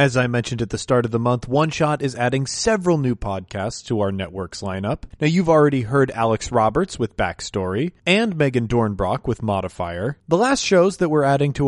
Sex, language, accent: male, English, American